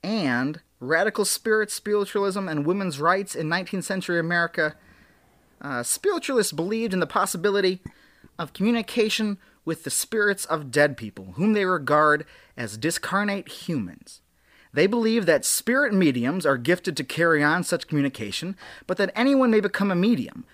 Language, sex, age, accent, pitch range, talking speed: English, male, 30-49, American, 135-195 Hz, 145 wpm